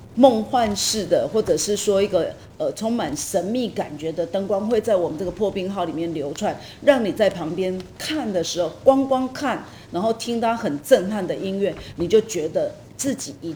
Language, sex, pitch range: Chinese, female, 180-235 Hz